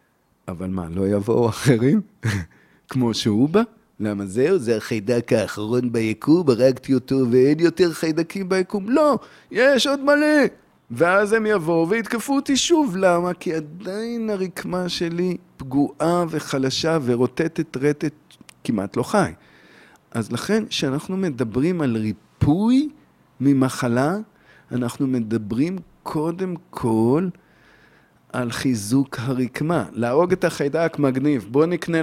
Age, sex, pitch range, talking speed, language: 40-59, male, 125-175 Hz, 115 wpm, Hebrew